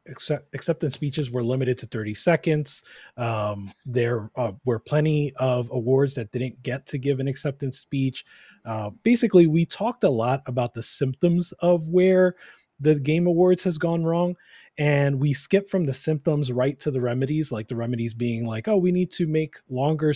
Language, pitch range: English, 120-150 Hz